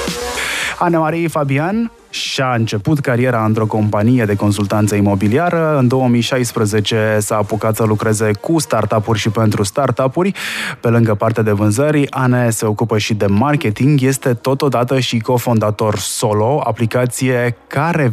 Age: 20-39